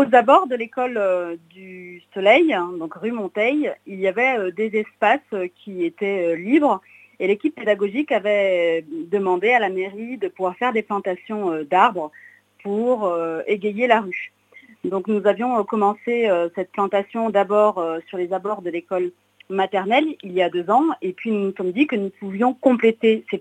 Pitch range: 185-245 Hz